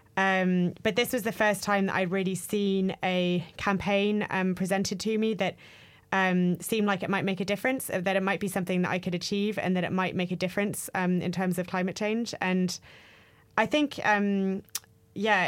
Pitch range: 180-200 Hz